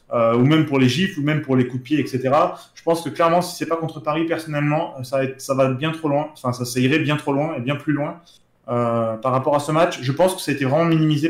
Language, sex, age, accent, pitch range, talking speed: French, male, 20-39, French, 120-150 Hz, 270 wpm